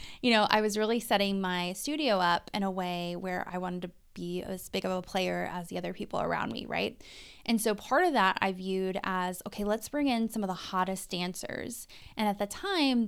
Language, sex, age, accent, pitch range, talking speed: English, female, 20-39, American, 190-245 Hz, 230 wpm